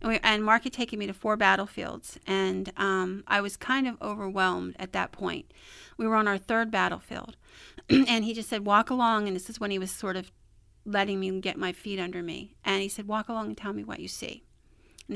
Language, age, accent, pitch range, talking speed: English, 40-59, American, 195-220 Hz, 230 wpm